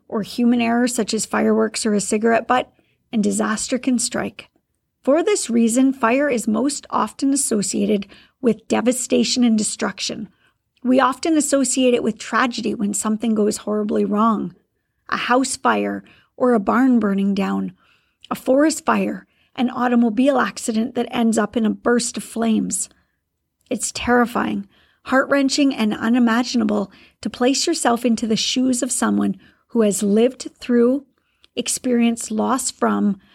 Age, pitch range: 40-59, 220-255 Hz